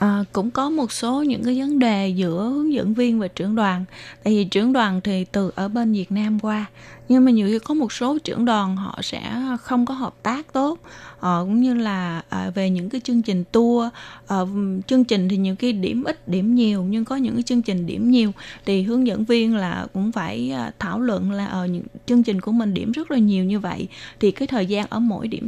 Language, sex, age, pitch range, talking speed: Vietnamese, female, 20-39, 190-240 Hz, 240 wpm